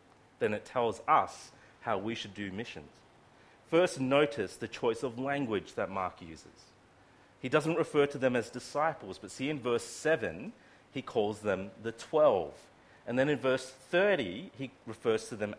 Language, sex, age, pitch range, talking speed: English, male, 40-59, 115-155 Hz, 170 wpm